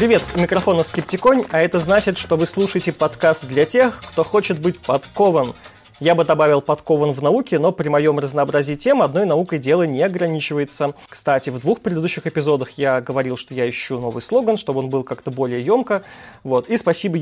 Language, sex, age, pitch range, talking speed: Russian, male, 20-39, 140-180 Hz, 190 wpm